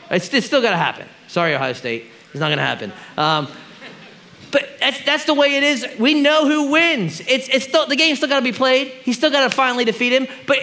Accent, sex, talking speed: American, male, 250 wpm